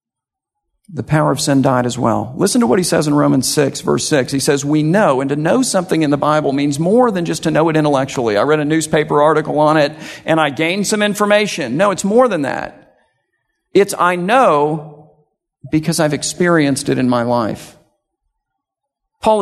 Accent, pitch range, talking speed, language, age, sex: American, 150-220 Hz, 200 wpm, English, 50-69, male